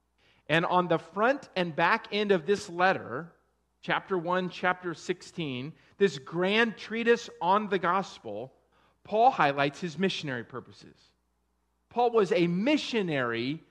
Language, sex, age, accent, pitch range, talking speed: English, male, 40-59, American, 140-190 Hz, 125 wpm